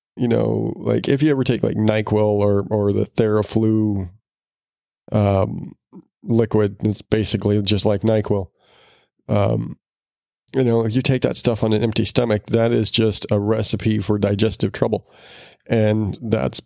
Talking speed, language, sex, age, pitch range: 150 wpm, English, male, 20-39, 105-115 Hz